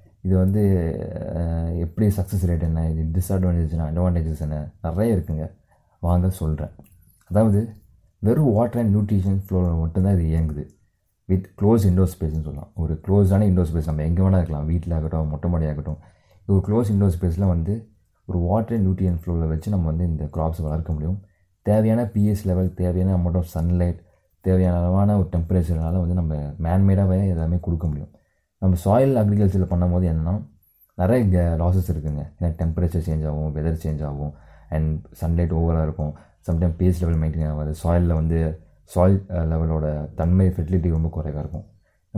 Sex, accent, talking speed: male, native, 155 wpm